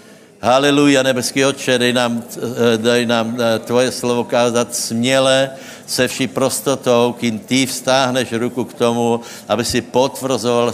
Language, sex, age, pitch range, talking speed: Slovak, male, 70-89, 110-130 Hz, 130 wpm